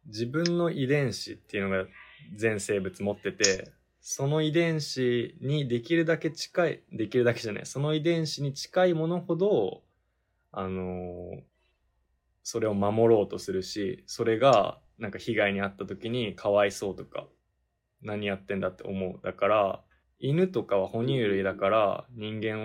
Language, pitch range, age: Japanese, 95-120 Hz, 20-39